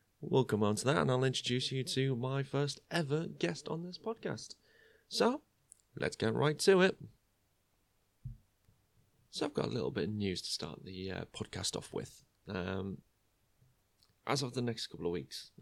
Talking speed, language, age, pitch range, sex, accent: 175 wpm, English, 30-49, 100-140 Hz, male, British